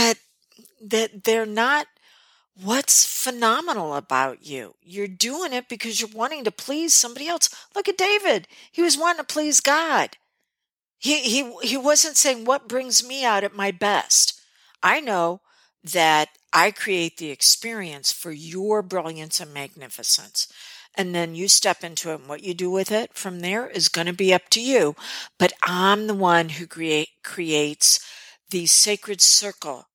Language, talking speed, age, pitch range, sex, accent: English, 160 wpm, 50-69, 165-225 Hz, female, American